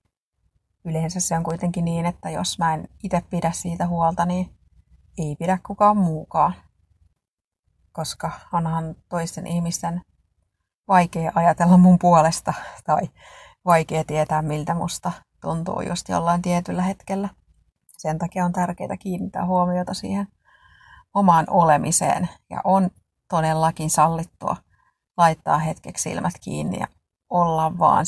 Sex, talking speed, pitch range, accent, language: female, 120 wpm, 160-180 Hz, native, Finnish